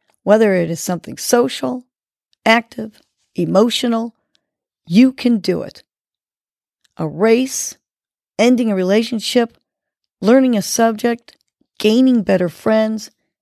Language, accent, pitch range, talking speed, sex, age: English, American, 185-240 Hz, 100 wpm, female, 40-59